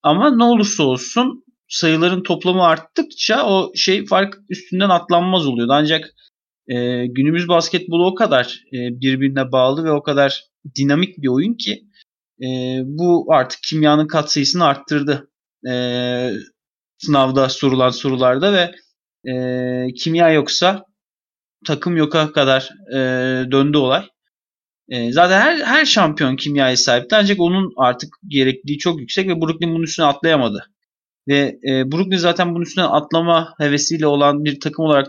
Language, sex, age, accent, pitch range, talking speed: Turkish, male, 30-49, native, 130-170 Hz, 135 wpm